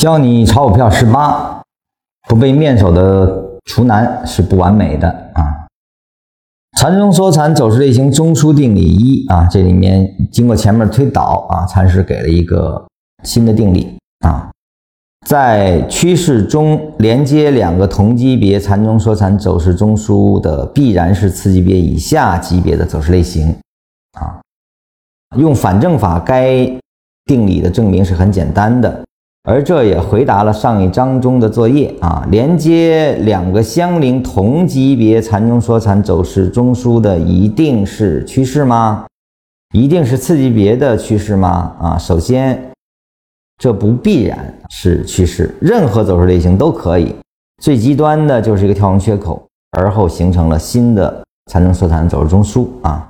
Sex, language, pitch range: male, Chinese, 90-125 Hz